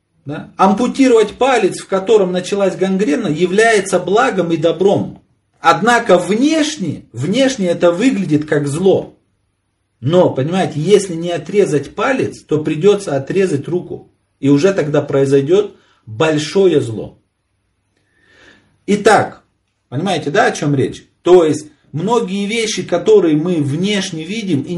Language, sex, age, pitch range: Ukrainian, male, 40-59, 150-195 Hz